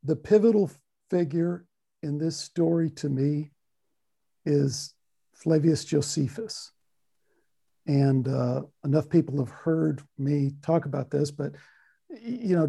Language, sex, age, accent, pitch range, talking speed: English, male, 60-79, American, 145-185 Hz, 115 wpm